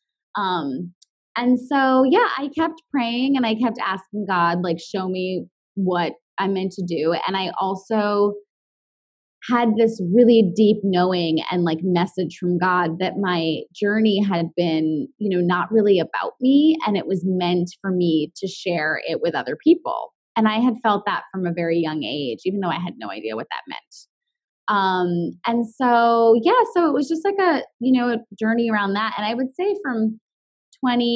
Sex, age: female, 20-39